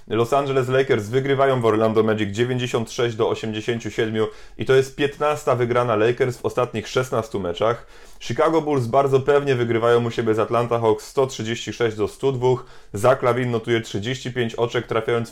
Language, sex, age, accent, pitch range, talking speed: Polish, male, 30-49, native, 115-130 Hz, 155 wpm